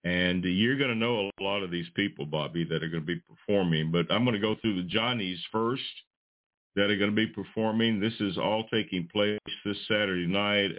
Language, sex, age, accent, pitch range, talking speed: English, male, 60-79, American, 85-115 Hz, 220 wpm